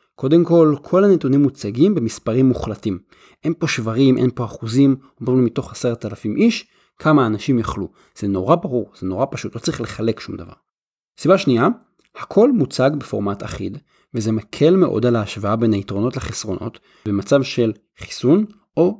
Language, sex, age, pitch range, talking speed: Hebrew, male, 30-49, 110-155 Hz, 160 wpm